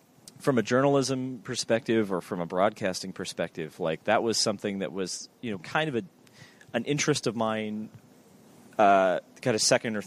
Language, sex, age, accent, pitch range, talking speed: English, male, 30-49, American, 100-125 Hz, 175 wpm